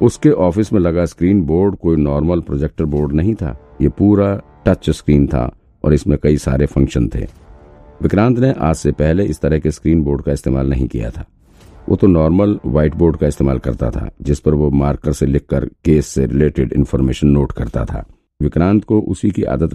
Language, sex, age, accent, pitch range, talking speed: Hindi, male, 50-69, native, 70-90 Hz, 200 wpm